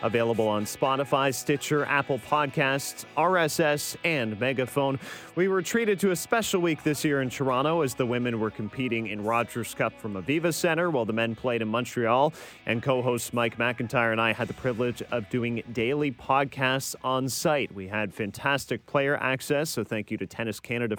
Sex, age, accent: male, 30-49, American